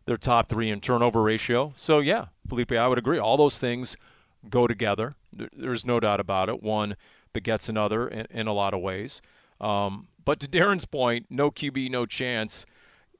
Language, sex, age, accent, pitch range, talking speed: English, male, 40-59, American, 115-150 Hz, 175 wpm